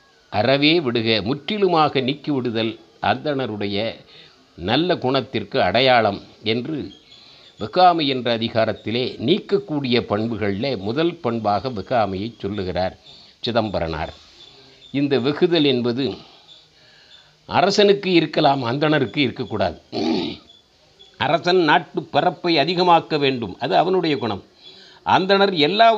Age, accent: 50-69, native